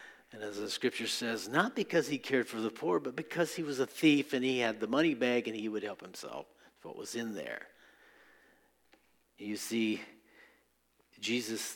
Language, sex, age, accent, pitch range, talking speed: English, male, 50-69, American, 120-155 Hz, 190 wpm